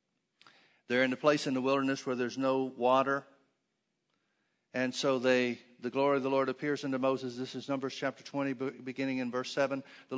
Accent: American